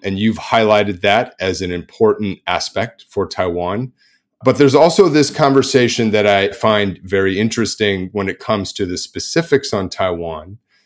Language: English